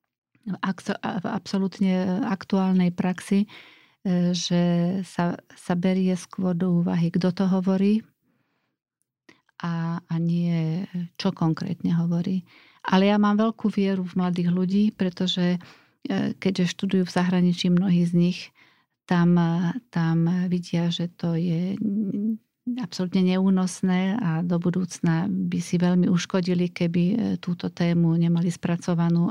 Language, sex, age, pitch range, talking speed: Slovak, female, 40-59, 170-190 Hz, 115 wpm